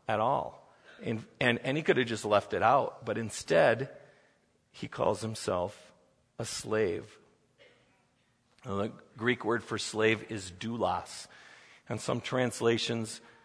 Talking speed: 135 wpm